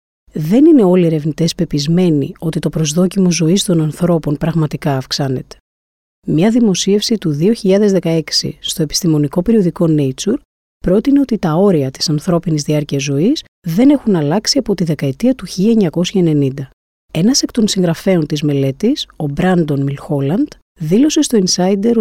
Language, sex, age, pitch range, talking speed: Greek, female, 30-49, 150-210 Hz, 135 wpm